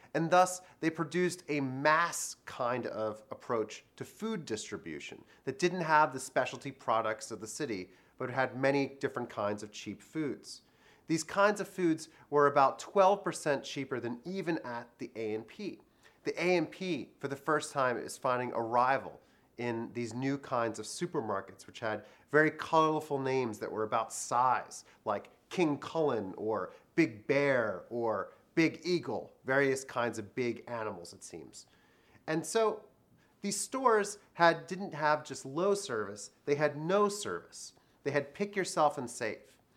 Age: 30-49